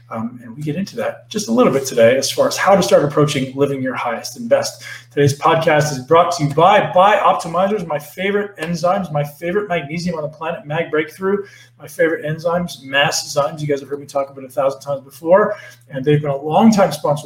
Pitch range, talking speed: 135-175 Hz, 235 wpm